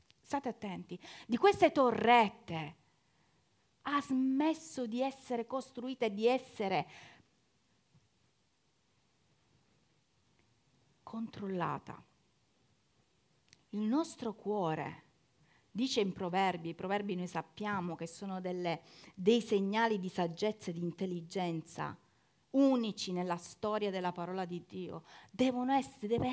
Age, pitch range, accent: 40-59, 195-265 Hz, native